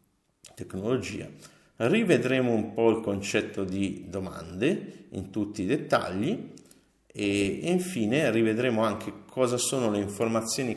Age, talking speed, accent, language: 50-69, 110 wpm, native, Italian